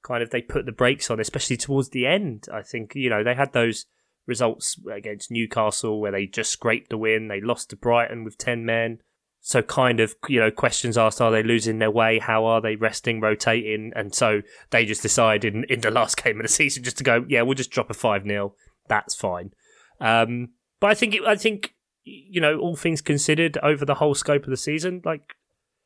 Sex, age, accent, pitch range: male, 20-39, British, 115-140 Hz